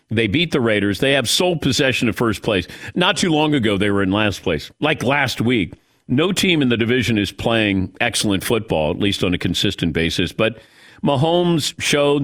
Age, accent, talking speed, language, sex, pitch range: 50-69, American, 200 wpm, English, male, 105-145 Hz